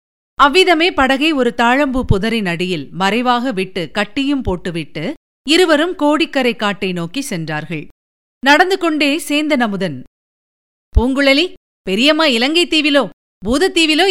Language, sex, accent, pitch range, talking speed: Tamil, female, native, 250-310 Hz, 100 wpm